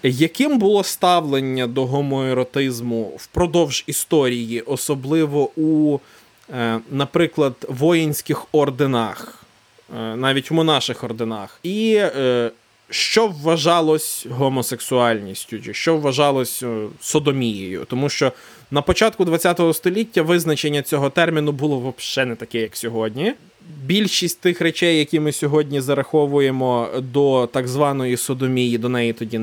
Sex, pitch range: male, 130-170 Hz